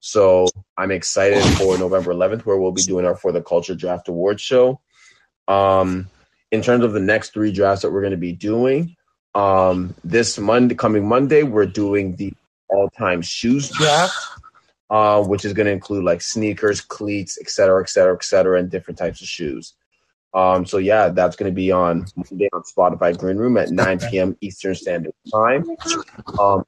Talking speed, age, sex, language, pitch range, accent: 185 wpm, 20-39, male, English, 95-105 Hz, American